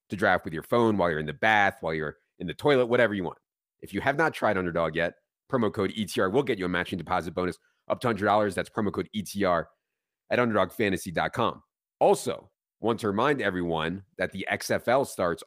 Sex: male